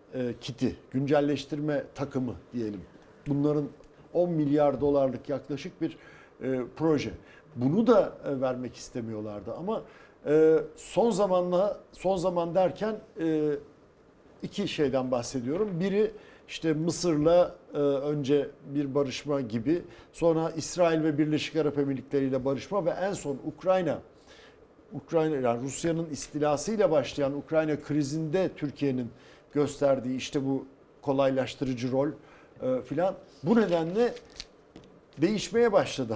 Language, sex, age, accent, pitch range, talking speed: Turkish, male, 60-79, native, 135-175 Hz, 105 wpm